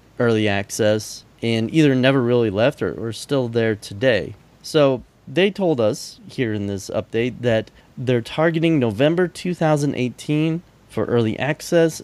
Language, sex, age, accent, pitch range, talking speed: English, male, 30-49, American, 115-150 Hz, 140 wpm